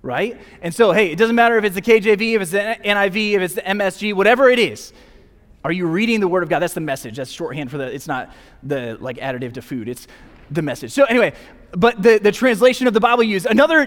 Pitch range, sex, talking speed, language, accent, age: 175-235 Hz, male, 240 wpm, English, American, 20-39